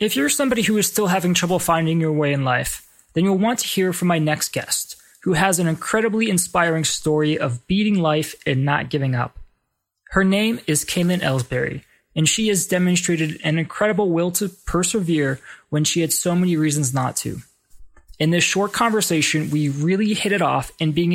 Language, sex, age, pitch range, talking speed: English, male, 20-39, 150-185 Hz, 195 wpm